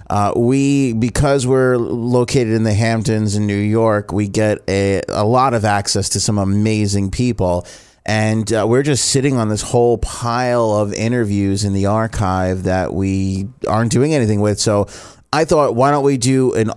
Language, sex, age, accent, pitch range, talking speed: English, male, 30-49, American, 105-120 Hz, 180 wpm